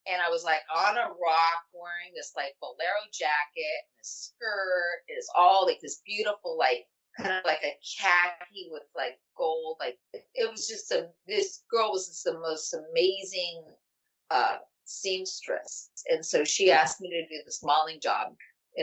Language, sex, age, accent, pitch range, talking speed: English, female, 30-49, American, 175-290 Hz, 170 wpm